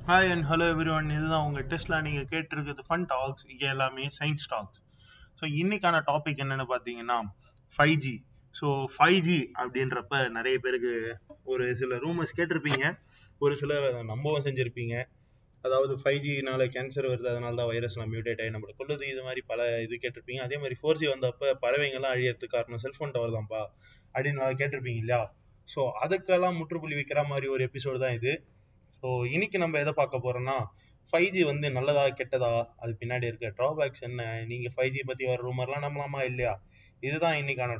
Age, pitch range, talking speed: 20-39, 120-145 Hz, 130 wpm